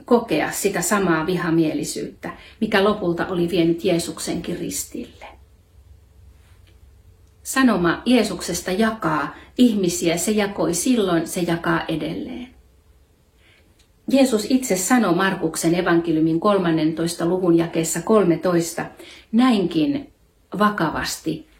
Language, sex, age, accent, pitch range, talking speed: Finnish, female, 40-59, native, 155-215 Hz, 85 wpm